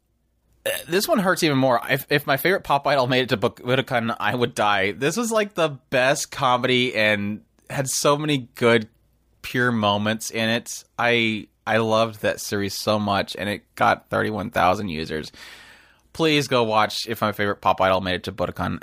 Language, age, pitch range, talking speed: English, 20-39, 95-120 Hz, 190 wpm